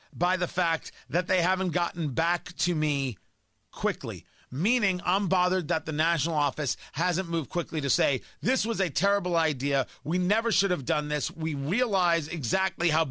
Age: 40-59